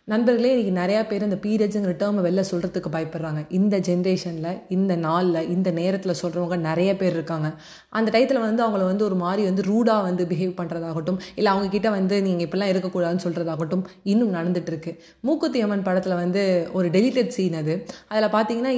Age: 20-39